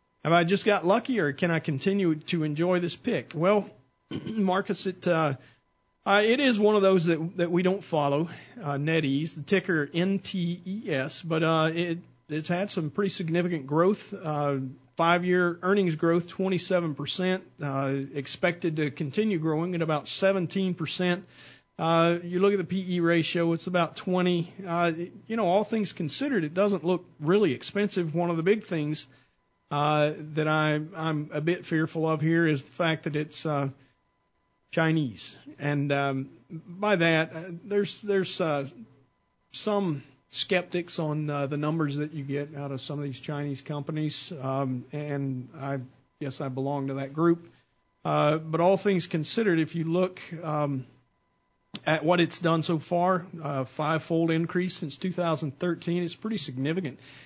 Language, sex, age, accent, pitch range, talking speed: English, male, 40-59, American, 145-180 Hz, 160 wpm